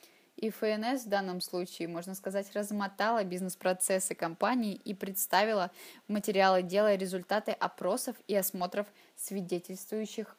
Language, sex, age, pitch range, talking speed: Russian, female, 10-29, 180-220 Hz, 110 wpm